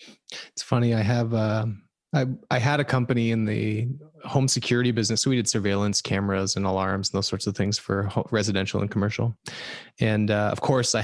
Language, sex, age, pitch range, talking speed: English, male, 20-39, 105-130 Hz, 195 wpm